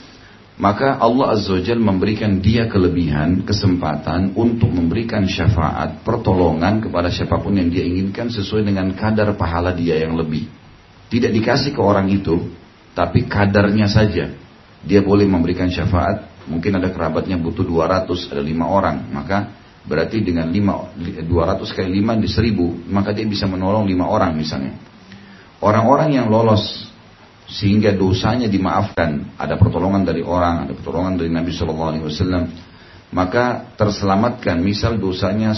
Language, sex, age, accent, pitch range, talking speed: Indonesian, male, 40-59, native, 90-110 Hz, 130 wpm